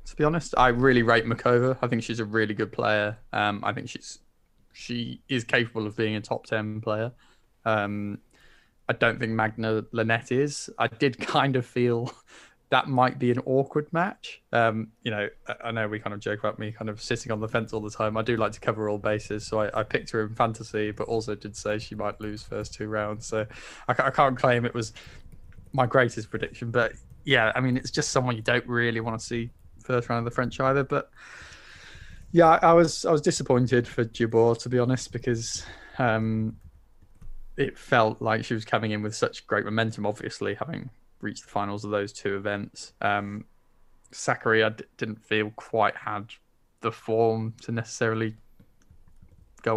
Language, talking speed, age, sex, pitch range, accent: English, 200 wpm, 10-29, male, 105-125 Hz, British